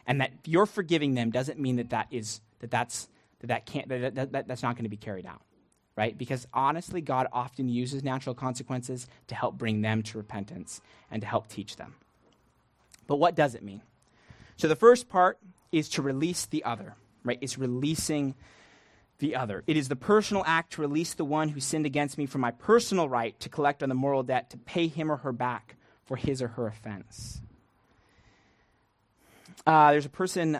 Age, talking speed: 30-49, 180 wpm